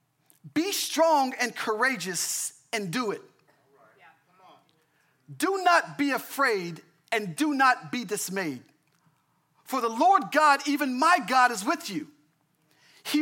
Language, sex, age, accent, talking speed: English, male, 40-59, American, 125 wpm